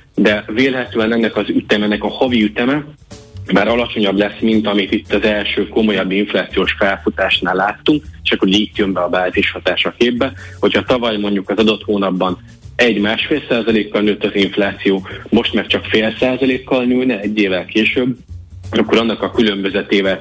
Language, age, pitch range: Hungarian, 30-49, 100-115 Hz